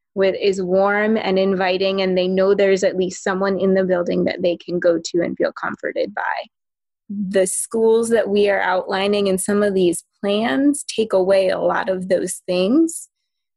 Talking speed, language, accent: 185 wpm, English, American